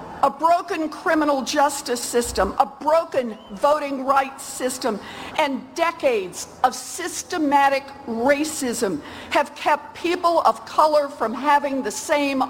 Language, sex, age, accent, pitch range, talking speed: English, female, 50-69, American, 255-315 Hz, 115 wpm